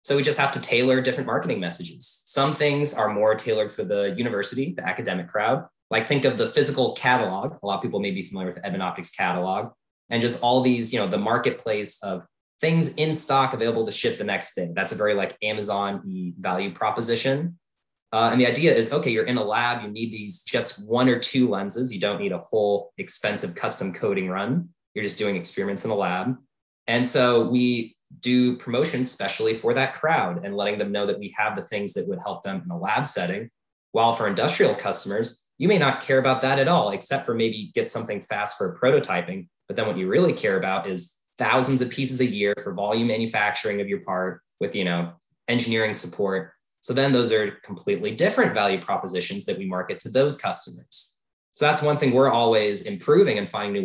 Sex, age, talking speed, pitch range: male, 20-39, 215 wpm, 100-130 Hz